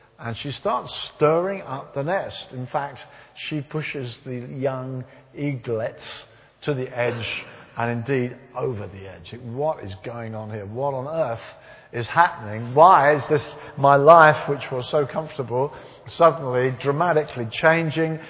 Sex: male